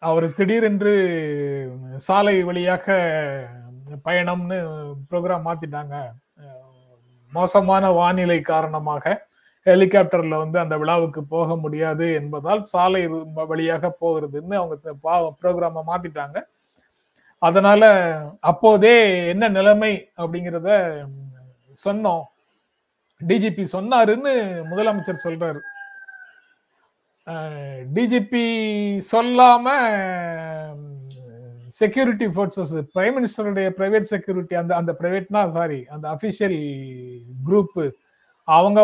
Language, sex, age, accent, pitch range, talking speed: Tamil, male, 30-49, native, 155-205 Hz, 75 wpm